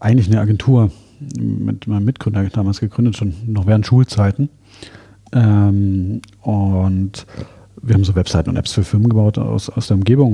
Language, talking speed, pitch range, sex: German, 155 wpm, 100-120 Hz, male